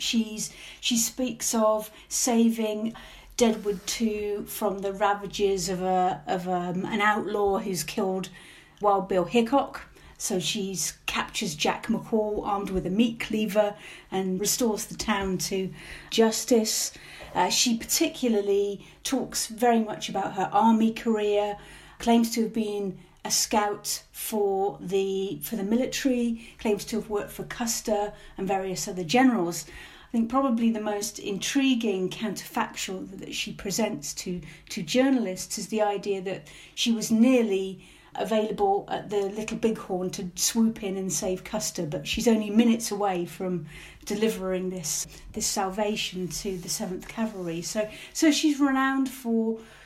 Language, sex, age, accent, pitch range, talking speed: English, female, 40-59, British, 190-225 Hz, 140 wpm